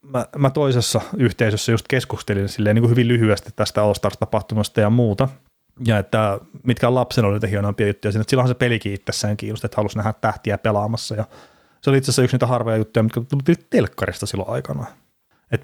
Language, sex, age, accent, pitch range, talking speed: Finnish, male, 30-49, native, 105-130 Hz, 190 wpm